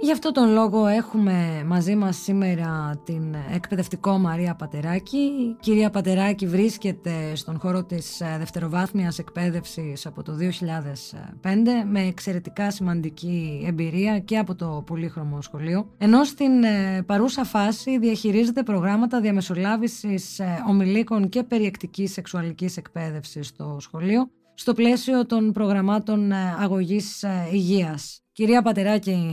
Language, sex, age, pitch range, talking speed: Greek, female, 20-39, 170-215 Hz, 115 wpm